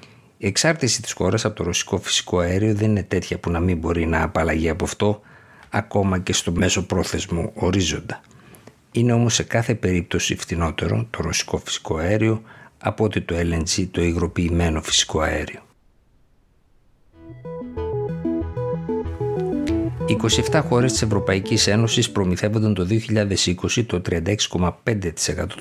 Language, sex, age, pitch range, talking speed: Greek, male, 60-79, 90-105 Hz, 125 wpm